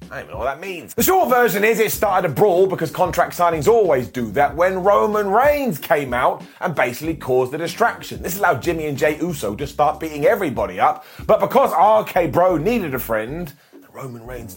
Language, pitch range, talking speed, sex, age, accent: English, 155-220 Hz, 210 wpm, male, 30-49, British